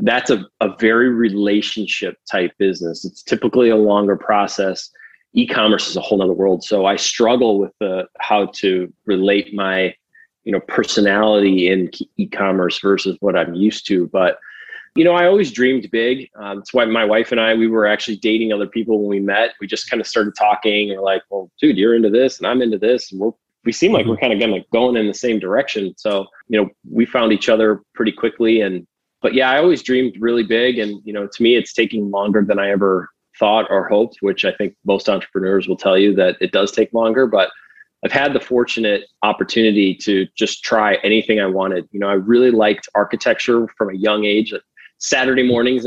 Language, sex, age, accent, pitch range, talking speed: English, male, 30-49, American, 100-115 Hz, 210 wpm